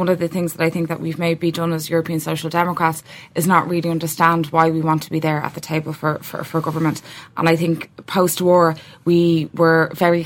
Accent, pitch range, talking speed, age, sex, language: Irish, 160-185 Hz, 230 wpm, 20-39, female, English